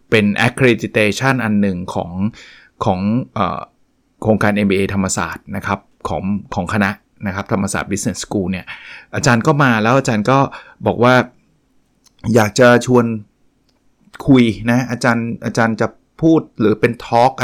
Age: 20-39